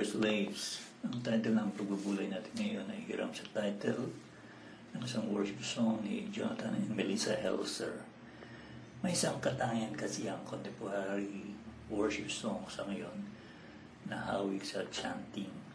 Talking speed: 130 wpm